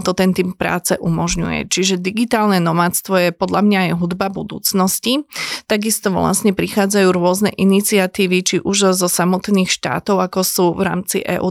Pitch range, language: 180-195 Hz, Slovak